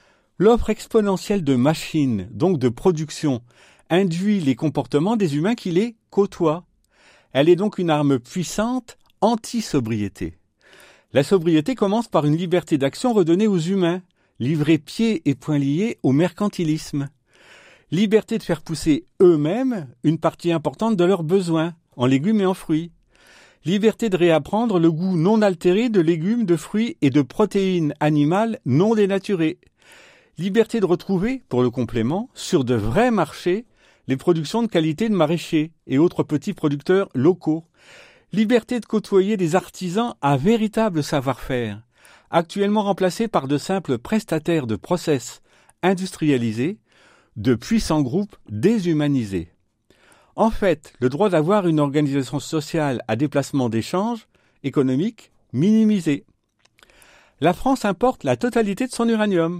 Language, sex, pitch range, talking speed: French, male, 145-205 Hz, 135 wpm